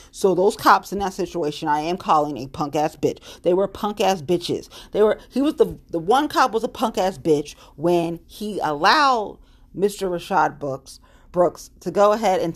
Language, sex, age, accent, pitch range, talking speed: English, female, 40-59, American, 165-210 Hz, 200 wpm